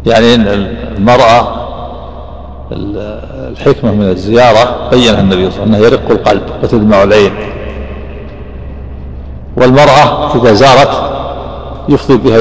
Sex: male